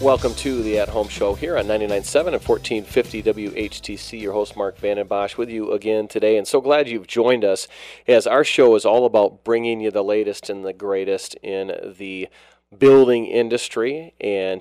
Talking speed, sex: 175 wpm, male